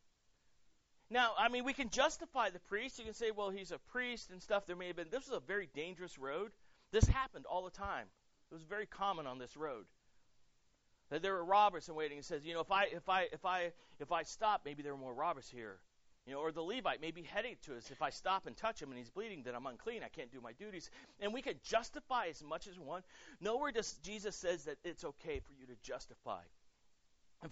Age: 40-59